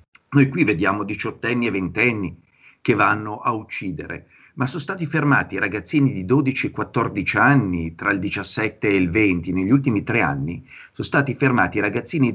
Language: Italian